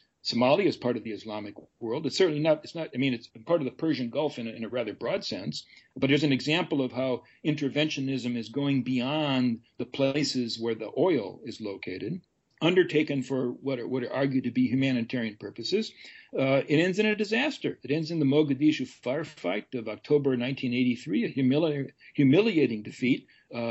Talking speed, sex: 180 wpm, male